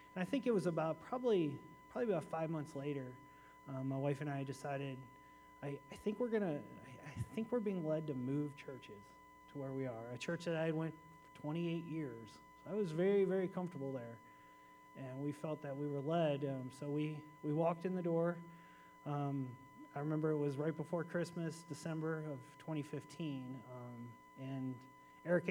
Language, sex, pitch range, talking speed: English, male, 140-160 Hz, 190 wpm